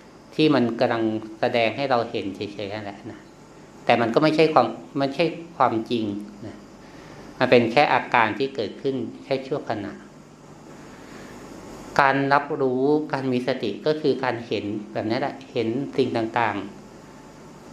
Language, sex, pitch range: Thai, male, 115-145 Hz